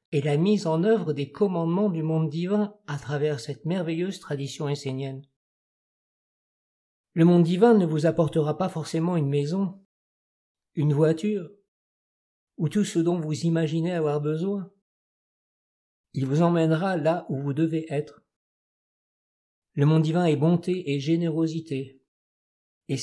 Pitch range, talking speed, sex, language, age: 145-175 Hz, 135 wpm, male, French, 50-69